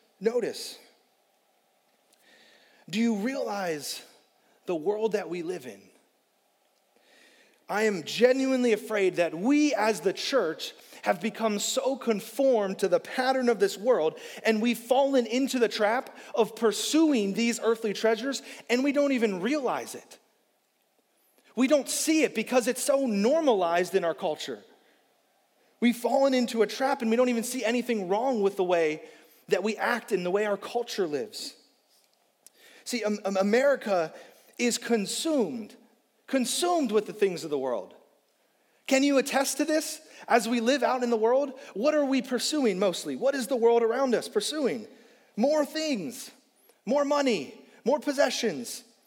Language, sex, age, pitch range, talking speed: English, male, 30-49, 215-270 Hz, 150 wpm